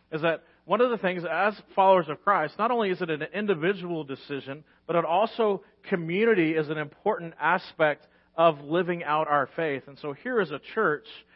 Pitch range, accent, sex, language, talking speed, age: 155-185 Hz, American, male, English, 190 wpm, 40-59